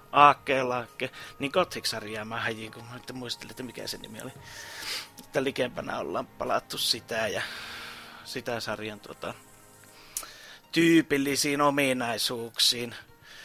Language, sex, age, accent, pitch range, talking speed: Finnish, male, 30-49, native, 120-150 Hz, 105 wpm